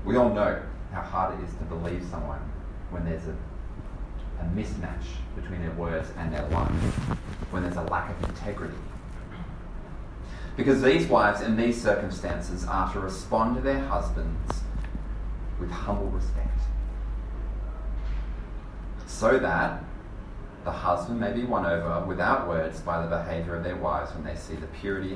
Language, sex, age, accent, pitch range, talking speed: English, male, 30-49, Australian, 85-110 Hz, 150 wpm